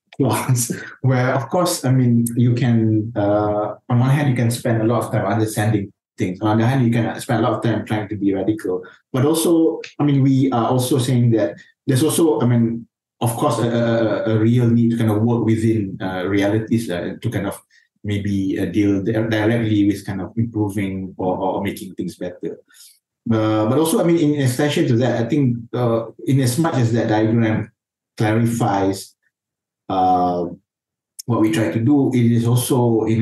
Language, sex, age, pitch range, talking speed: English, male, 20-39, 105-125 Hz, 195 wpm